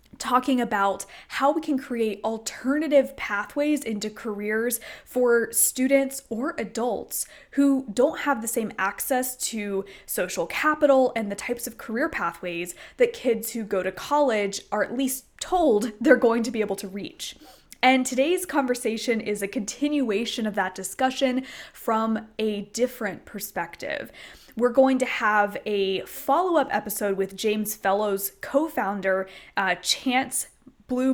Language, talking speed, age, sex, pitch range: English, 140 wpm, 20-39, female, 205-260 Hz